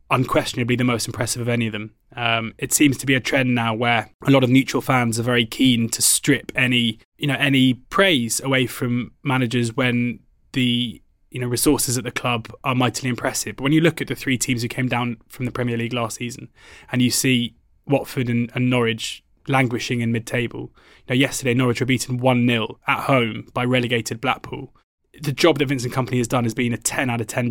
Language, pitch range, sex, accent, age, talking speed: English, 120-135 Hz, male, British, 20-39, 215 wpm